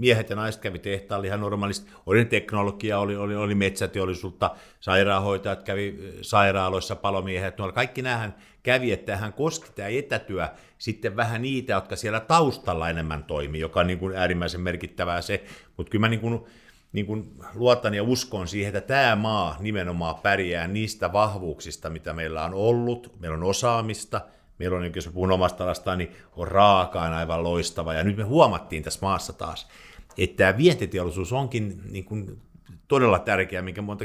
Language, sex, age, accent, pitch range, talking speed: Finnish, male, 50-69, native, 90-105 Hz, 165 wpm